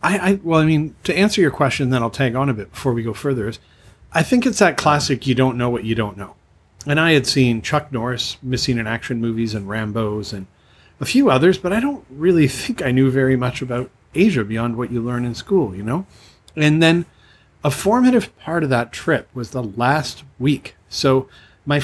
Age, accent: 40-59, American